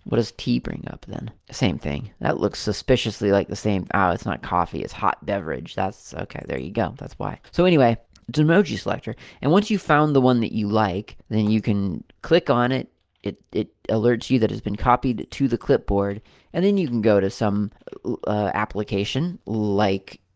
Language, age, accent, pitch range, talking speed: English, 30-49, American, 100-130 Hz, 205 wpm